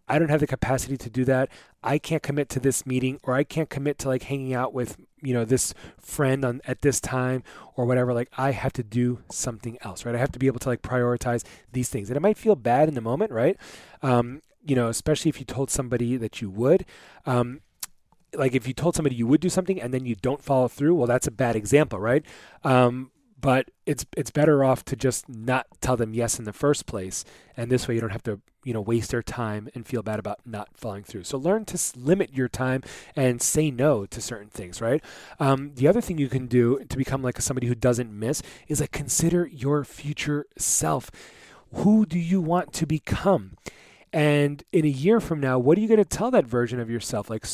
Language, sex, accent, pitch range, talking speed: English, male, American, 125-155 Hz, 230 wpm